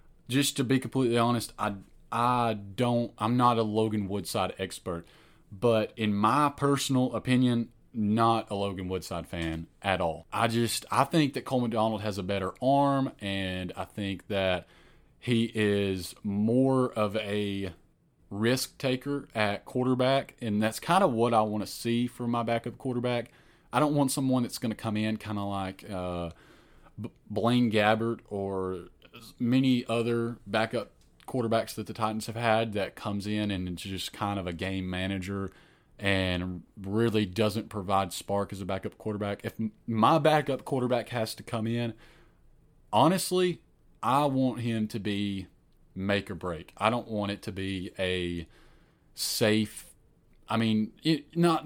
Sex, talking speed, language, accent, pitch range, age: male, 155 wpm, English, American, 100-125 Hz, 30-49